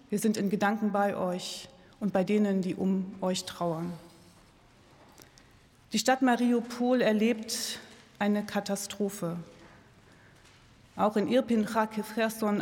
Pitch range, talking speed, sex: 195-230 Hz, 110 wpm, female